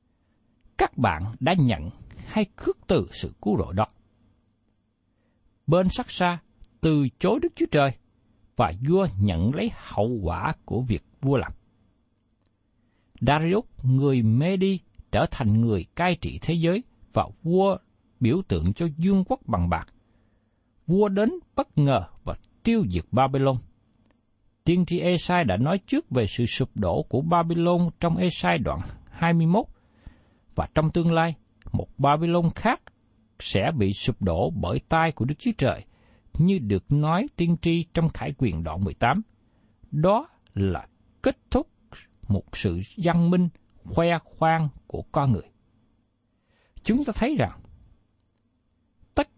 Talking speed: 145 wpm